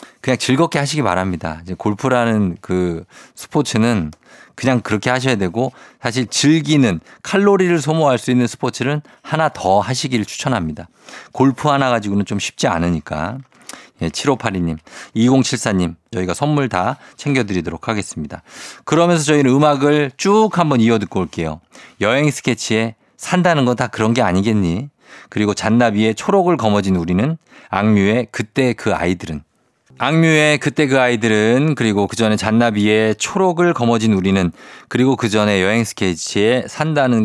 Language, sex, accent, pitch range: Korean, male, native, 100-140 Hz